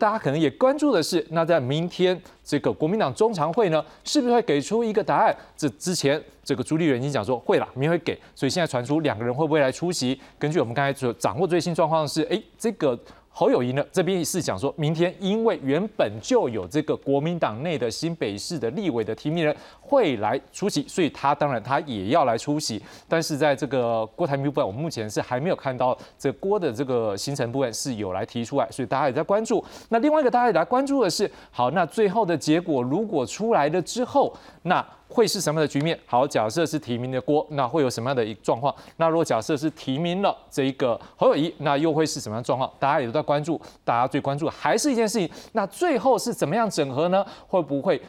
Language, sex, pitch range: Chinese, male, 140-185 Hz